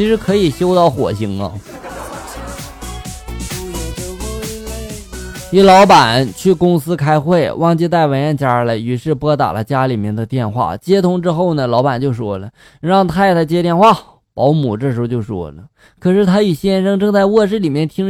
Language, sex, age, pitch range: Chinese, male, 20-39, 125-195 Hz